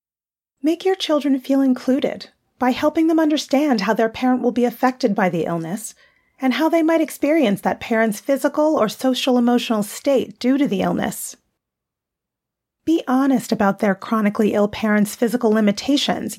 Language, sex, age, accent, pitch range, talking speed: English, female, 30-49, American, 220-300 Hz, 155 wpm